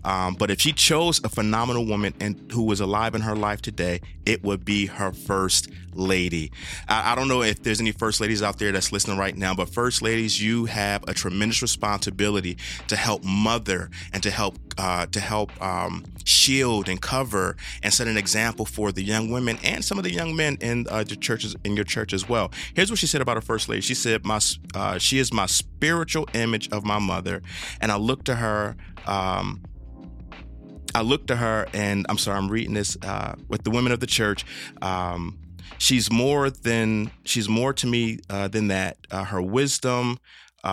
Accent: American